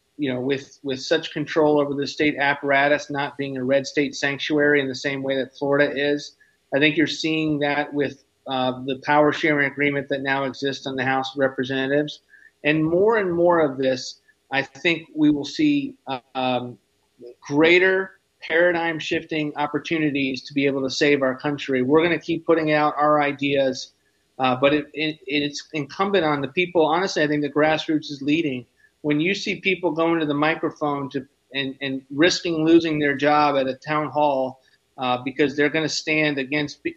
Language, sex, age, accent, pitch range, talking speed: English, male, 40-59, American, 140-160 Hz, 185 wpm